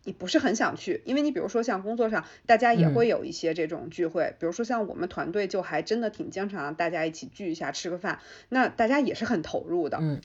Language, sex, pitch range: Chinese, female, 170-235 Hz